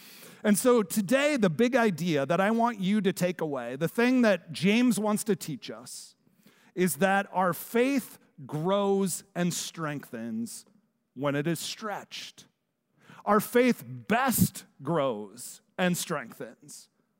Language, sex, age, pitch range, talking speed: English, male, 40-59, 175-230 Hz, 135 wpm